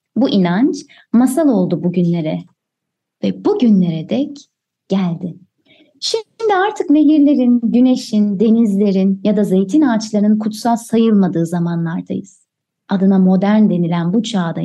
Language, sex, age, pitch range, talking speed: Turkish, female, 30-49, 185-255 Hz, 105 wpm